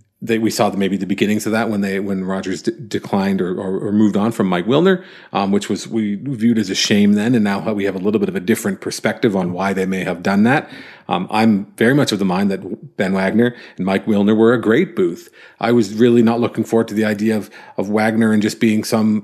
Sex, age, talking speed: male, 40-59, 255 wpm